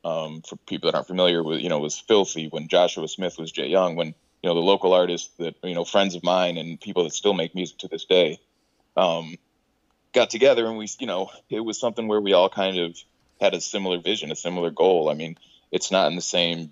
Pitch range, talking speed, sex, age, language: 85-100 Hz, 240 wpm, male, 20-39, English